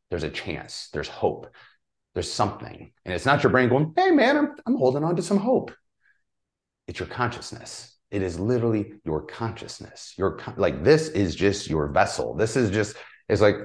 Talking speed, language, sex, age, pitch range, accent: 190 wpm, English, male, 30-49, 90-135 Hz, American